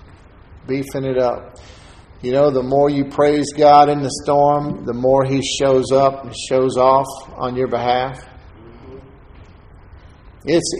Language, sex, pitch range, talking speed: English, male, 110-145 Hz, 140 wpm